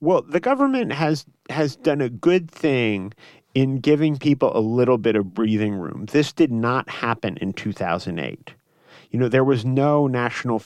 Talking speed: 170 wpm